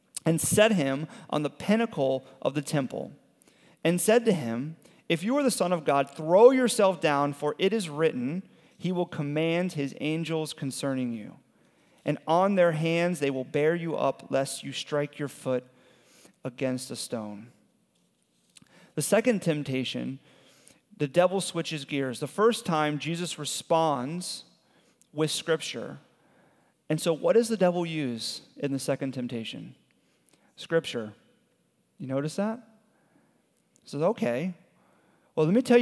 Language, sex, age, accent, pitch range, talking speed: English, male, 30-49, American, 140-180 Hz, 145 wpm